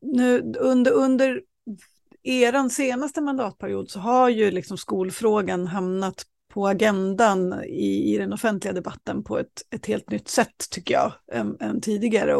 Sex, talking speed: female, 140 wpm